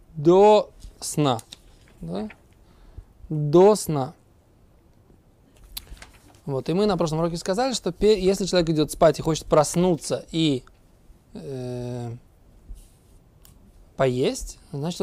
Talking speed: 95 wpm